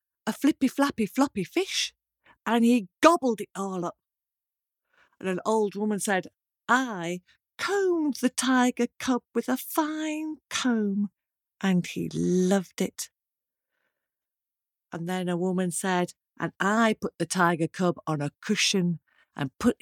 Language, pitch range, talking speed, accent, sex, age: English, 175-240 Hz, 135 wpm, British, female, 50-69